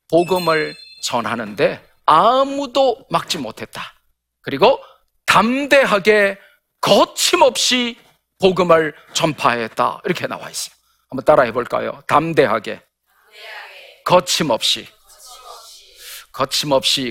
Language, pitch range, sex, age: Korean, 130-185 Hz, male, 40-59